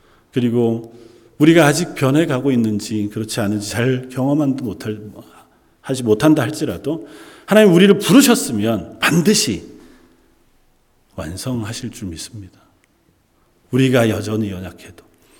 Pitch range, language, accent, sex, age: 100-130 Hz, Korean, native, male, 40-59